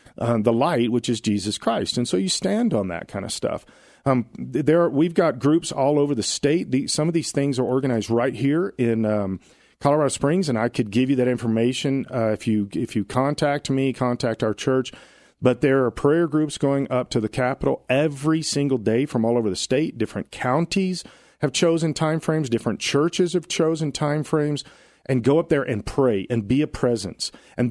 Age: 40-59